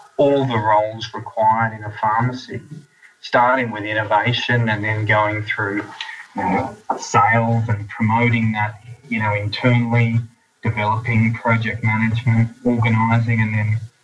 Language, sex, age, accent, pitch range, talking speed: English, male, 20-39, Australian, 110-125 Hz, 125 wpm